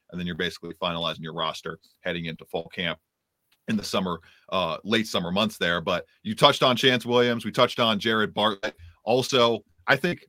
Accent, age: American, 30-49